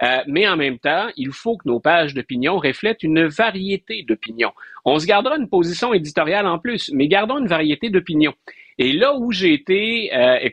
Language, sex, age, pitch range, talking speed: French, male, 50-69, 140-195 Hz, 200 wpm